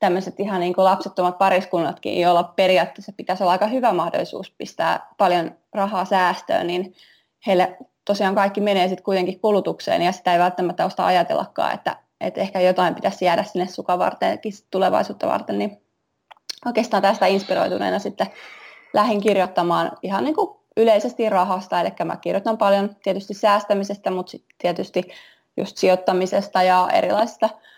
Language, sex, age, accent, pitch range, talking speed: Finnish, female, 20-39, native, 185-205 Hz, 145 wpm